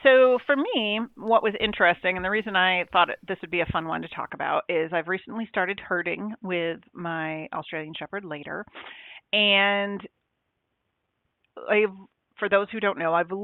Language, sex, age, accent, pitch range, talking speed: English, female, 40-59, American, 175-210 Hz, 170 wpm